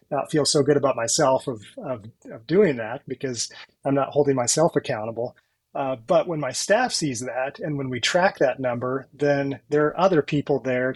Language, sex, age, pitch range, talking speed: English, male, 30-49, 130-155 Hz, 195 wpm